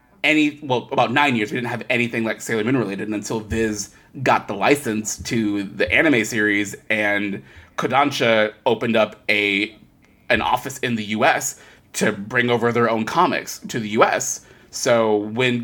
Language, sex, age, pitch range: English, male, 20-39, 110-145 Hz